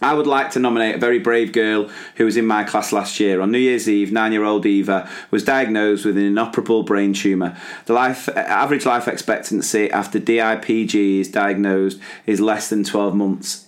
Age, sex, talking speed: 30-49, male, 190 wpm